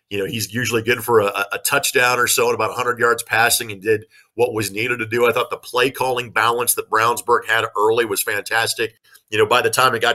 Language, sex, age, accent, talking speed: English, male, 40-59, American, 240 wpm